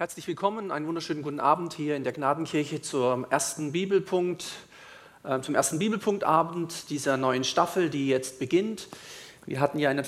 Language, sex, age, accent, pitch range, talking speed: German, male, 40-59, German, 140-170 Hz, 165 wpm